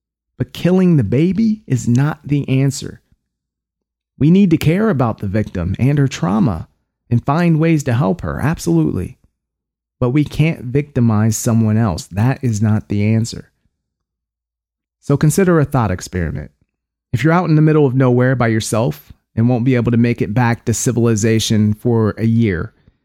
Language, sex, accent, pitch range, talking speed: English, male, American, 110-140 Hz, 165 wpm